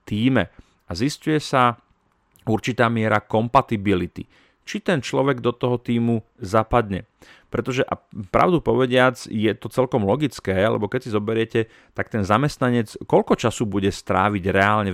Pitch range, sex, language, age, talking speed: 95-120 Hz, male, Slovak, 40-59, 135 wpm